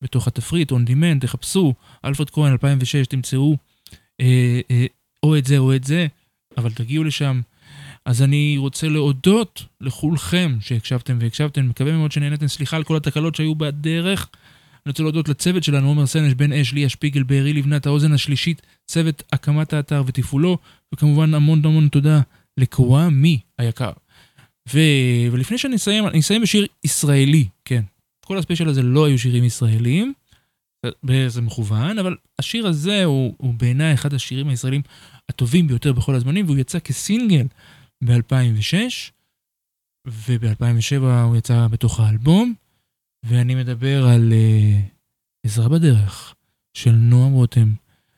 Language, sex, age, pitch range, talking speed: English, male, 20-39, 125-155 Hz, 135 wpm